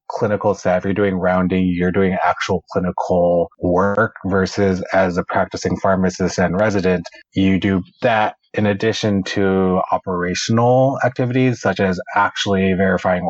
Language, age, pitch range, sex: English, 20-39, 90-100 Hz, male